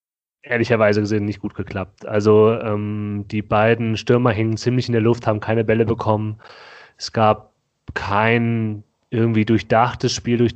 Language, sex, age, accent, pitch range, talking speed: German, male, 30-49, German, 105-120 Hz, 150 wpm